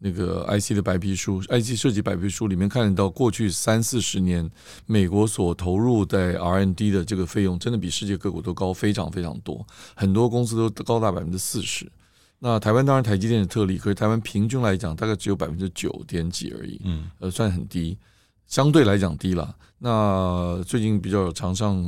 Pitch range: 90-110 Hz